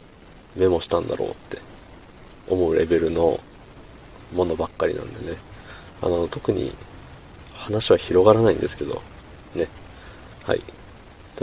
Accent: native